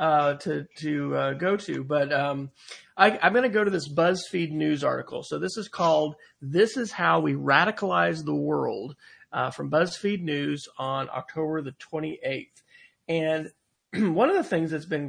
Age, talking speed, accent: 40-59, 175 wpm, American